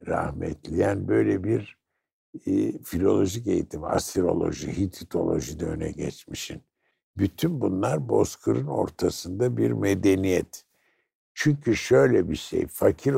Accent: native